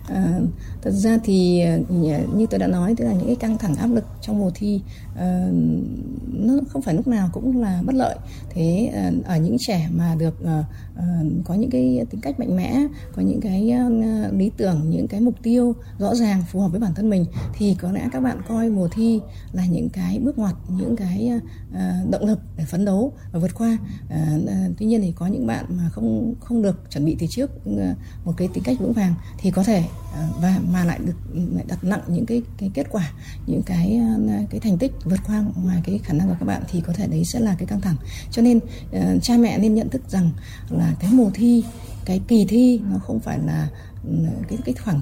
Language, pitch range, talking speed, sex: Vietnamese, 150-220 Hz, 225 wpm, female